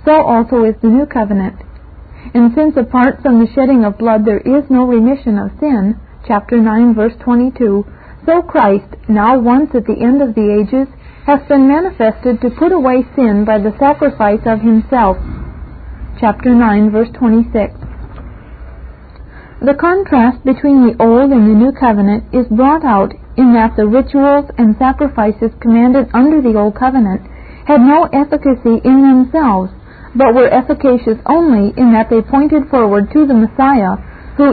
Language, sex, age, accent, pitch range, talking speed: English, female, 40-59, American, 215-275 Hz, 160 wpm